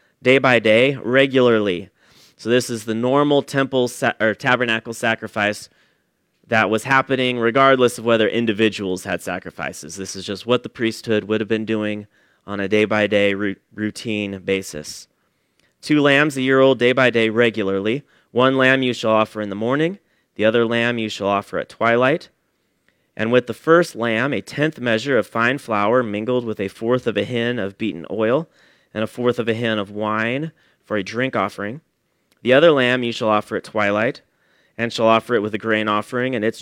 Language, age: English, 30-49